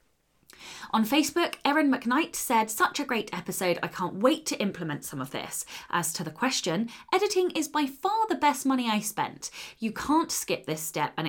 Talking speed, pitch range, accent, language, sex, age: 190 wpm, 170-245 Hz, British, English, female, 20-39